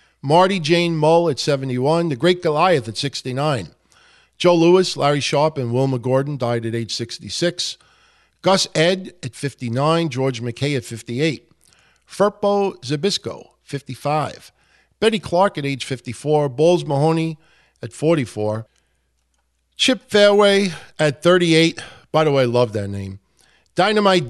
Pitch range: 135-185 Hz